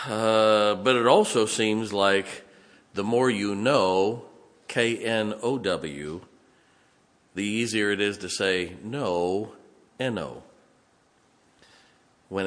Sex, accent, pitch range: male, American, 100-130 Hz